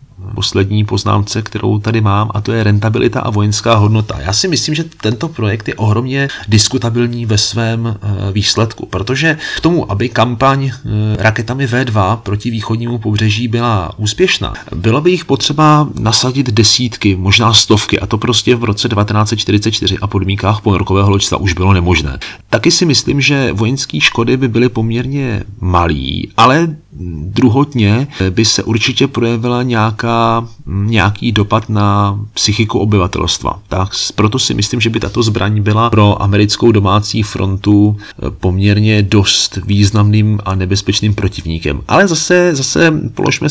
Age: 30-49